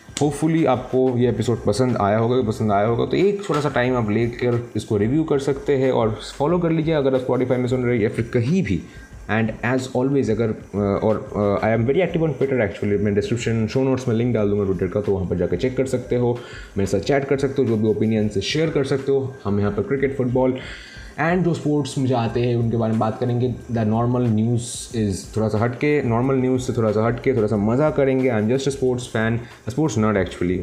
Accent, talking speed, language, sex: native, 240 wpm, Hindi, male